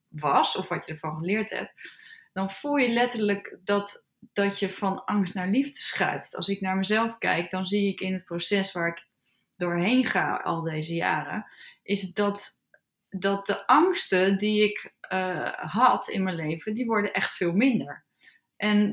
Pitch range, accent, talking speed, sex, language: 180-215 Hz, Dutch, 175 wpm, female, Dutch